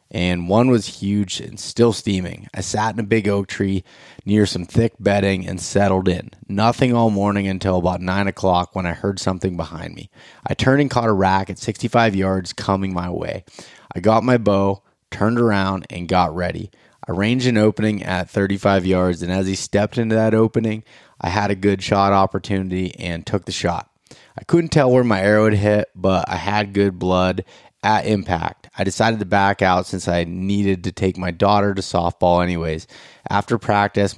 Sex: male